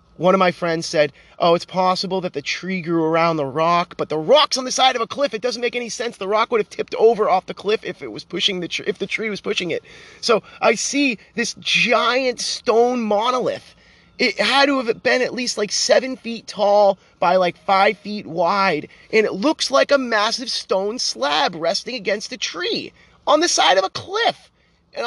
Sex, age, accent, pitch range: male, 30-49, American, 175-240 Hz